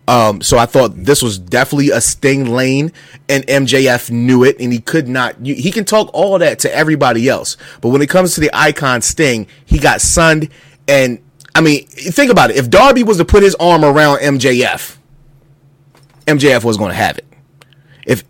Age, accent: 30-49, American